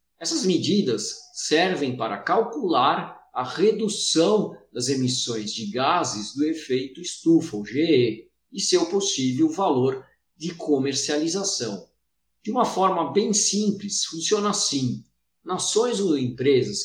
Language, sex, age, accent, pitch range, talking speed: Portuguese, male, 50-69, Brazilian, 125-200 Hz, 115 wpm